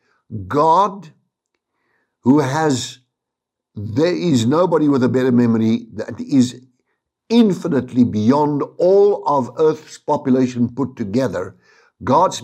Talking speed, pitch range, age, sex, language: 100 wpm, 120-165 Hz, 60-79, male, English